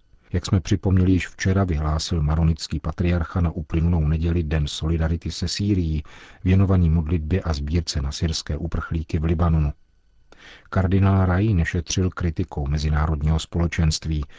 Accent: native